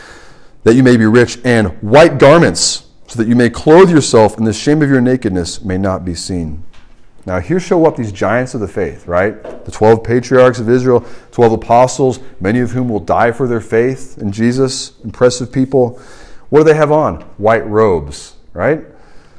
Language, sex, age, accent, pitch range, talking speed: English, male, 30-49, American, 115-155 Hz, 190 wpm